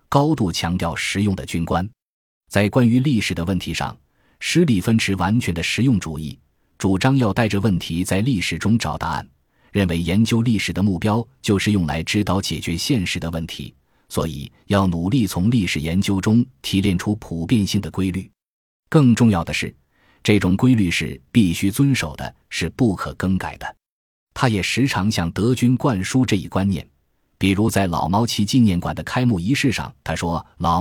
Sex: male